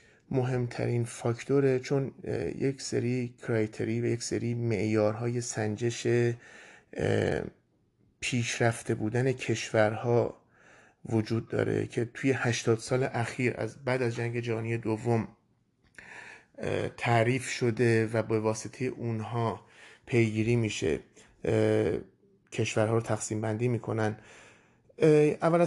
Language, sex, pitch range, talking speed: Persian, male, 115-130 Hz, 95 wpm